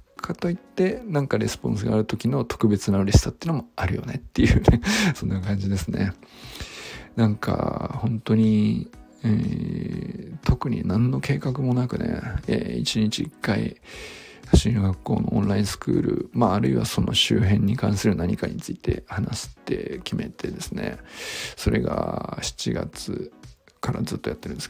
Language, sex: Japanese, male